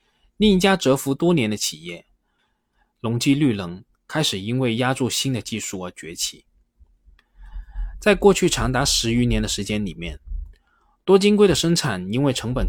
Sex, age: male, 20-39